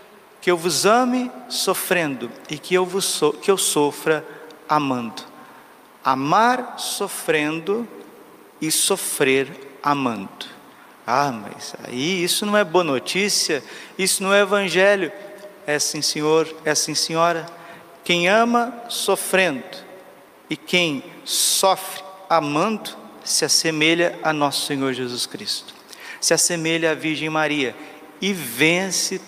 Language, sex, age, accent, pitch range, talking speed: Portuguese, male, 50-69, Brazilian, 145-190 Hz, 120 wpm